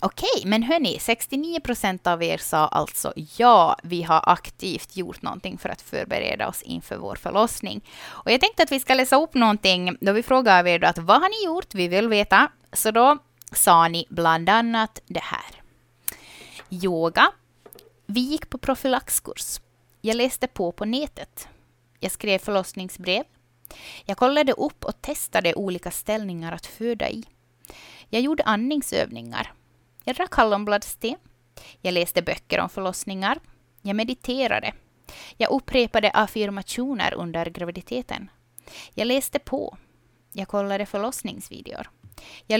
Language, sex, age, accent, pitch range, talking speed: Swedish, female, 20-39, native, 180-255 Hz, 140 wpm